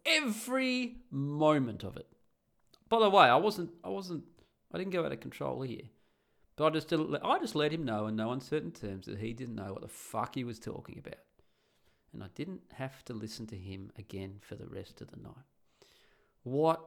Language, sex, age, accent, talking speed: English, male, 40-59, Australian, 205 wpm